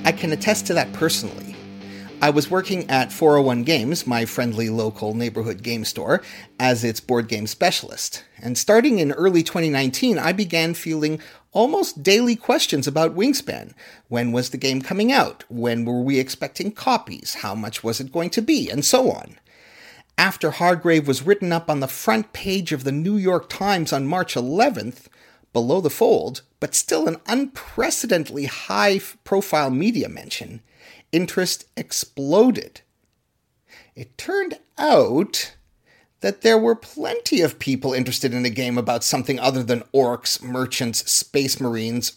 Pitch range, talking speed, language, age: 125-190 Hz, 150 wpm, English, 40-59